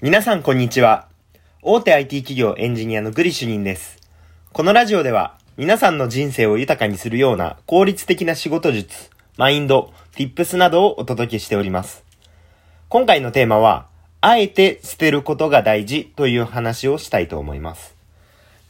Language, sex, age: Japanese, male, 30-49